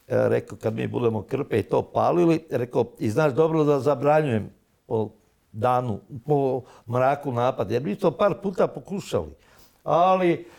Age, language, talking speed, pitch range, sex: 60-79, Croatian, 145 wpm, 125-190 Hz, male